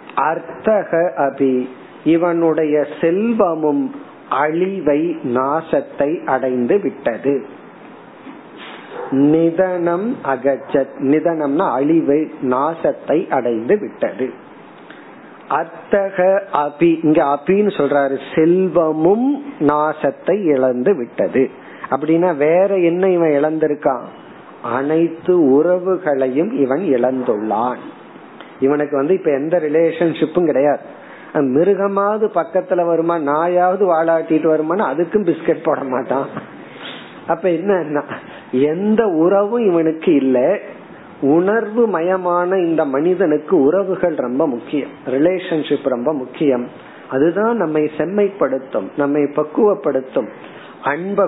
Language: Tamil